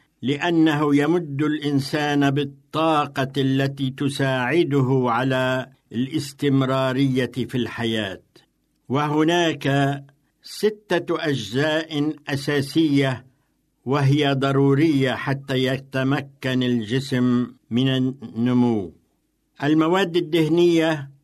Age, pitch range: 60-79, 130-155 Hz